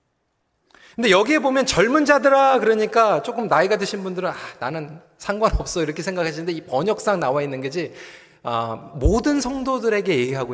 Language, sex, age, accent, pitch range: Korean, male, 40-59, native, 185-270 Hz